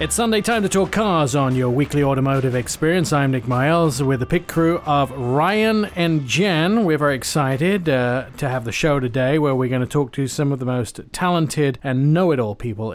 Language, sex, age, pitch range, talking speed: English, male, 40-59, 130-165 Hz, 210 wpm